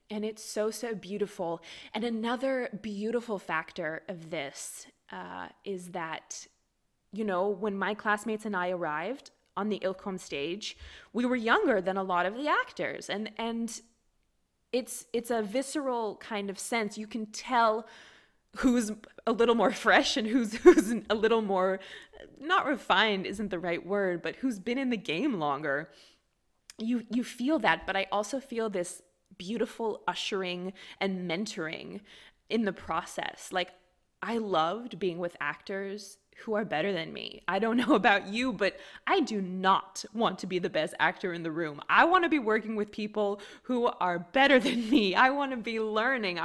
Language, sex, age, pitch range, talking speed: English, female, 20-39, 185-235 Hz, 170 wpm